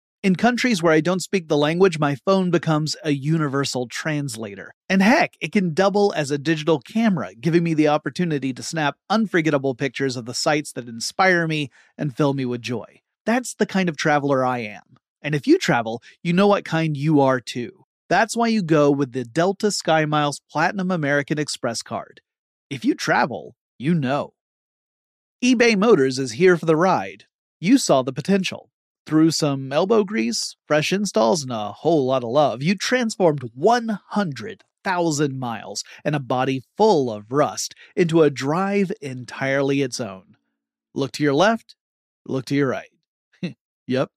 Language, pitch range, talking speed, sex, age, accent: English, 135-185 Hz, 170 wpm, male, 30-49, American